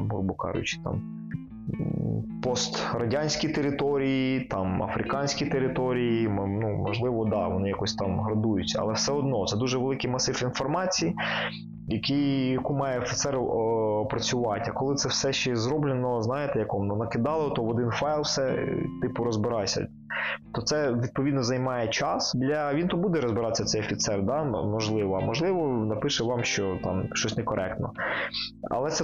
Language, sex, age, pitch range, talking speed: Ukrainian, male, 20-39, 110-140 Hz, 145 wpm